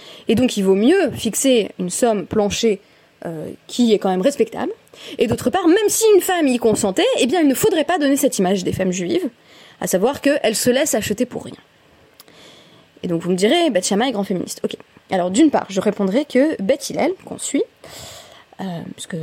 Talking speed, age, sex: 210 wpm, 20-39, female